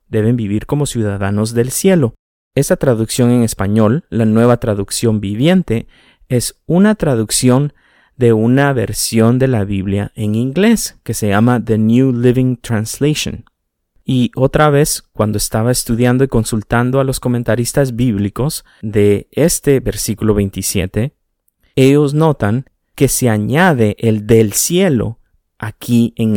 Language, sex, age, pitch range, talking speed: Spanish, male, 30-49, 110-140 Hz, 130 wpm